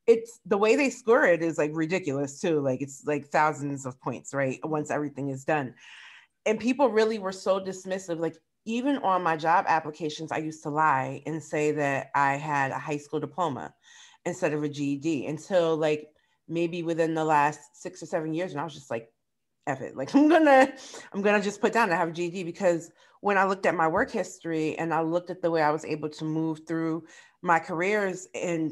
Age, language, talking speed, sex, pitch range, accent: 30-49, English, 215 wpm, female, 155-185 Hz, American